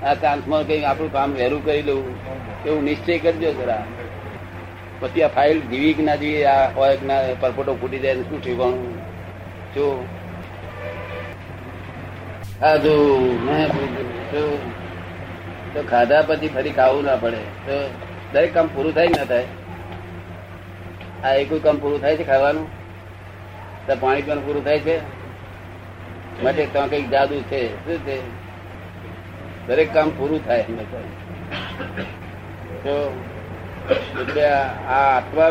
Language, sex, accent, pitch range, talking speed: Gujarati, male, native, 90-145 Hz, 80 wpm